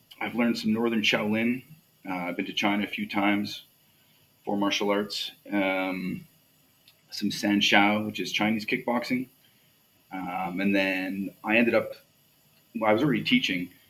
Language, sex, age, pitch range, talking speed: English, male, 30-49, 95-115 Hz, 150 wpm